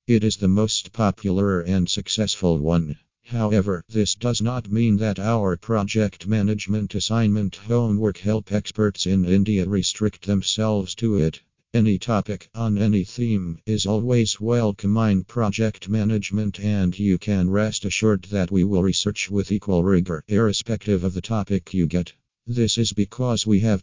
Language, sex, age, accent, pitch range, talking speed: English, male, 50-69, American, 95-110 Hz, 150 wpm